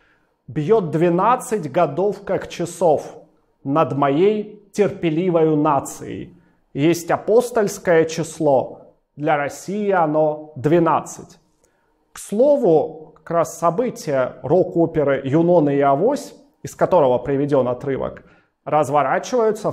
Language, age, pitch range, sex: Russian, 30-49, 150-210 Hz, male